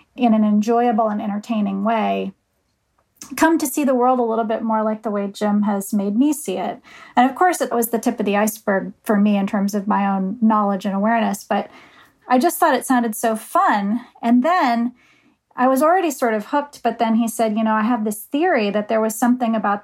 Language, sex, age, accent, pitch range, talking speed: English, female, 30-49, American, 210-250 Hz, 225 wpm